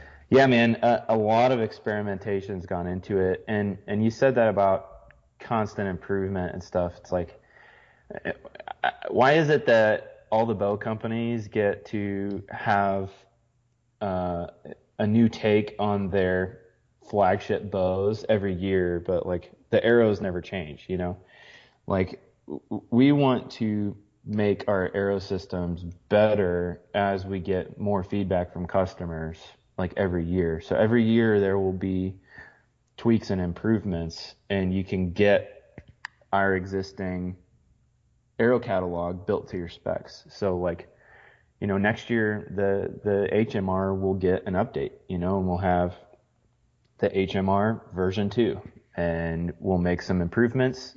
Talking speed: 140 wpm